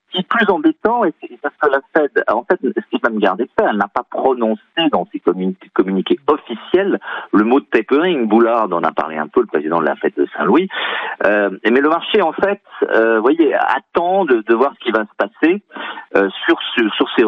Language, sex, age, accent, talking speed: French, male, 50-69, French, 235 wpm